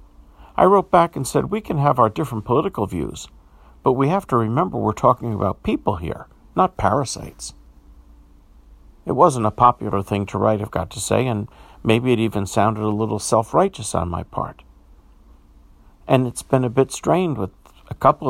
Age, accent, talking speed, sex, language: 50-69, American, 180 wpm, male, English